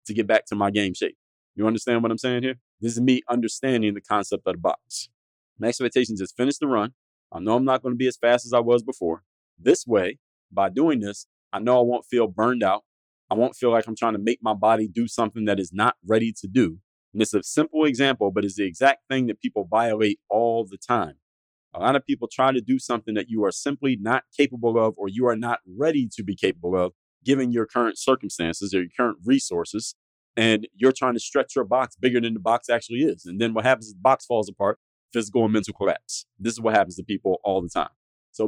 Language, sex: English, male